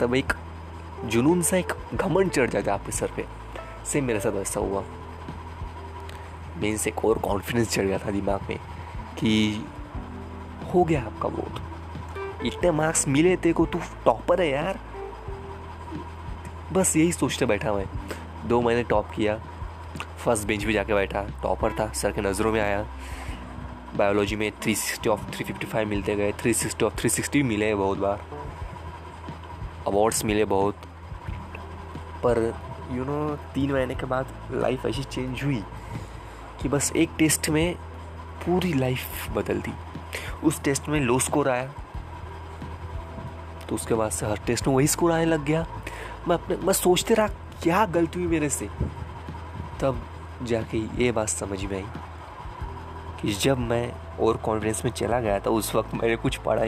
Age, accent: 20-39, native